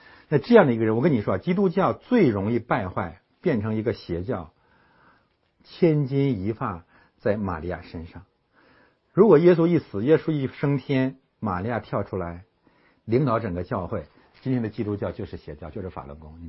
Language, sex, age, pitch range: Chinese, male, 60-79, 95-120 Hz